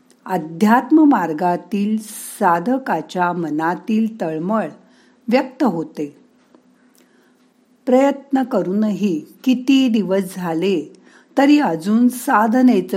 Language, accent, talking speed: Marathi, native, 70 wpm